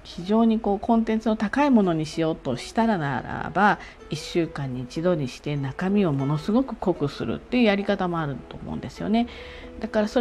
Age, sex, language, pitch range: 40-59, female, Japanese, 145-215 Hz